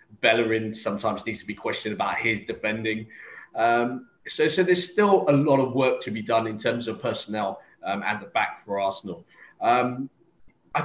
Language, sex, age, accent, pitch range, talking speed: English, male, 20-39, British, 110-140 Hz, 185 wpm